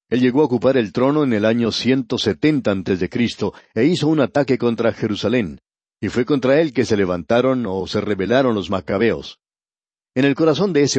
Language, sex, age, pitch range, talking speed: Spanish, male, 50-69, 105-135 Hz, 200 wpm